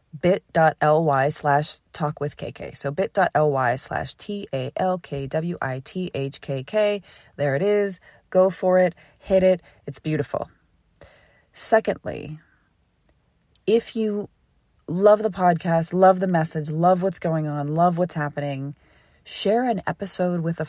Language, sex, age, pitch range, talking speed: English, female, 30-49, 150-190 Hz, 115 wpm